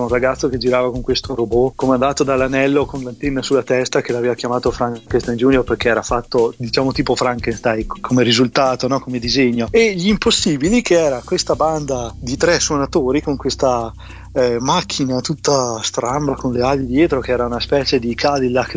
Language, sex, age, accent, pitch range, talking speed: Italian, male, 30-49, native, 125-155 Hz, 175 wpm